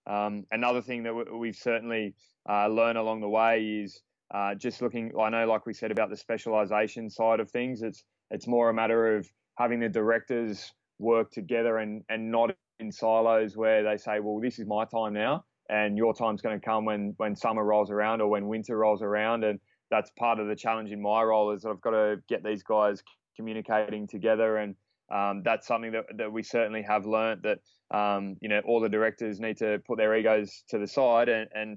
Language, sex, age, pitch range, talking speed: English, male, 20-39, 105-115 Hz, 215 wpm